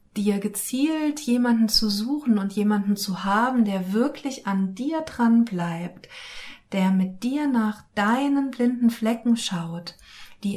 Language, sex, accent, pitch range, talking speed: German, female, German, 195-240 Hz, 135 wpm